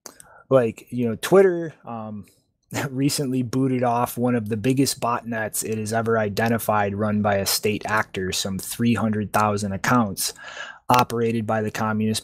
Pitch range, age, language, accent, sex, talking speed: 110-140 Hz, 20-39, English, American, male, 140 wpm